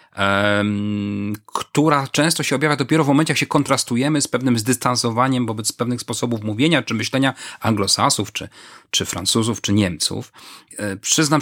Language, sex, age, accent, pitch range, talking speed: Polish, male, 40-59, native, 110-145 Hz, 135 wpm